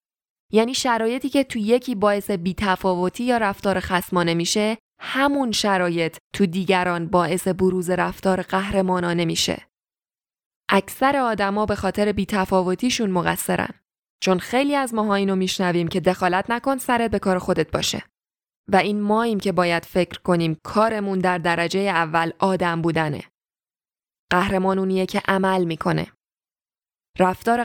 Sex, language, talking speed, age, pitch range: female, Persian, 130 wpm, 20-39, 180-220 Hz